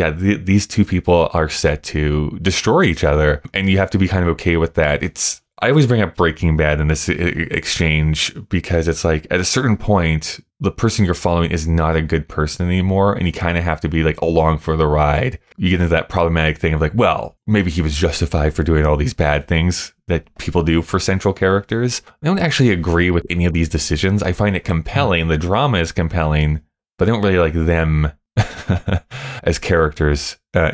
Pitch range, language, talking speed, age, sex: 80-95 Hz, English, 215 wpm, 20-39, male